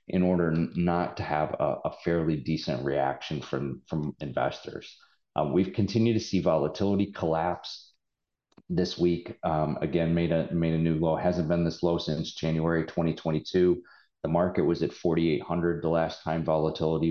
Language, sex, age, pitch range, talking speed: English, male, 30-49, 80-90 Hz, 160 wpm